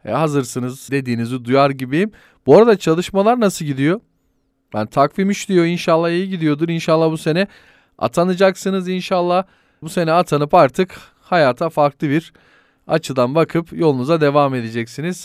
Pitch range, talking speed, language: 135-185 Hz, 135 wpm, Turkish